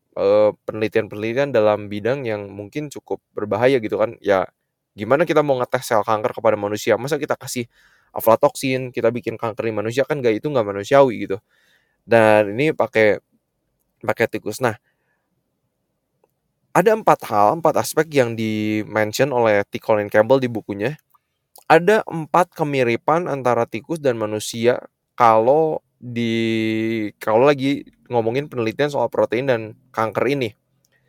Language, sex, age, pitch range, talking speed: Indonesian, male, 20-39, 115-150 Hz, 135 wpm